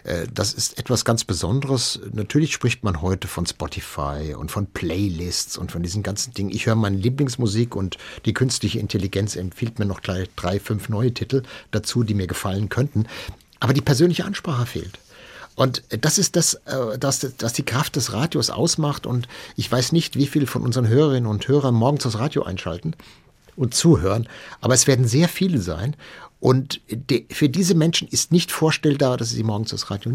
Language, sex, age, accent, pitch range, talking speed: German, male, 60-79, German, 110-145 Hz, 185 wpm